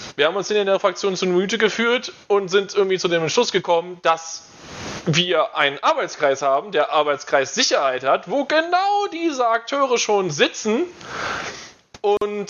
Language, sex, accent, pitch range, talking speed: German, male, German, 135-195 Hz, 155 wpm